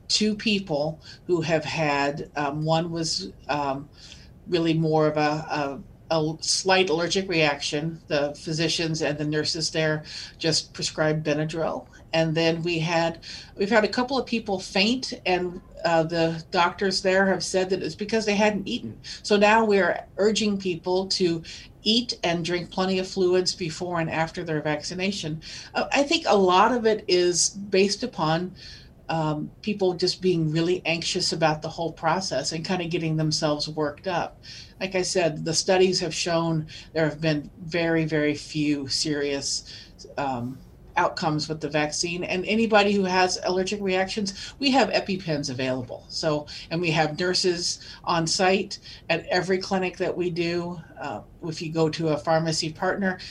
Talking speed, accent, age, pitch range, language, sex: 160 wpm, American, 50-69, 155-185 Hz, English, female